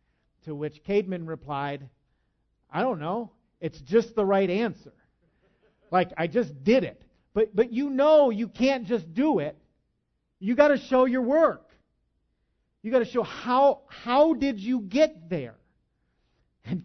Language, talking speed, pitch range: English, 155 wpm, 155-230 Hz